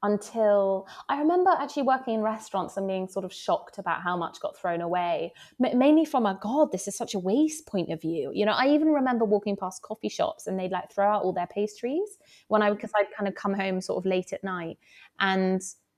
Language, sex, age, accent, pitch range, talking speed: English, female, 20-39, British, 185-245 Hz, 230 wpm